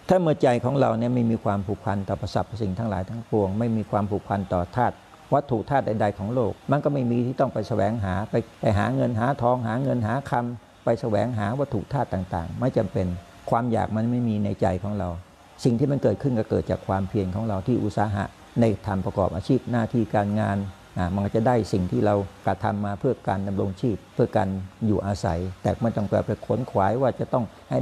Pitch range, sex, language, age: 100-120 Hz, male, Thai, 60-79